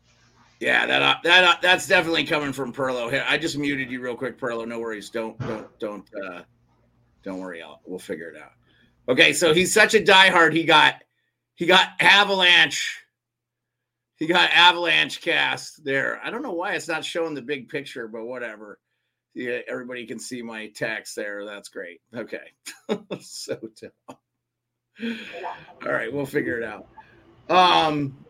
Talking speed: 165 wpm